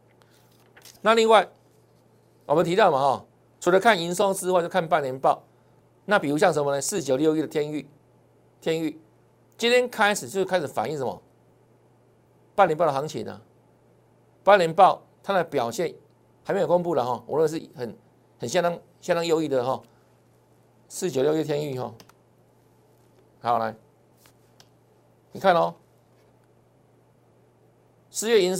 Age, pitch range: 50-69, 140-190 Hz